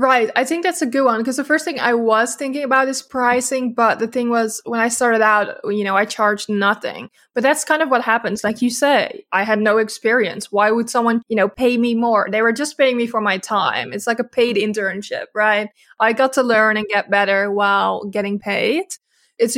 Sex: female